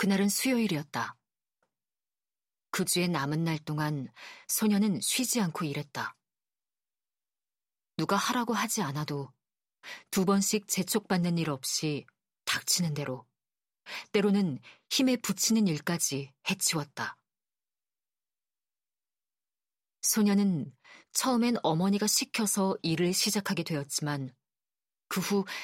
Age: 40-59